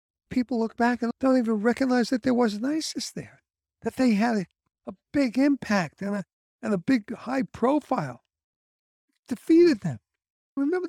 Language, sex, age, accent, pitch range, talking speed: English, male, 60-79, American, 175-270 Hz, 160 wpm